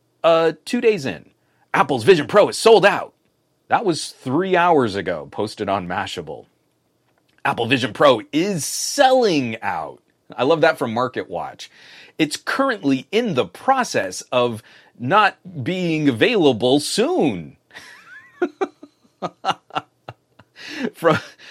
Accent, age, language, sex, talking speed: American, 30-49, English, male, 110 wpm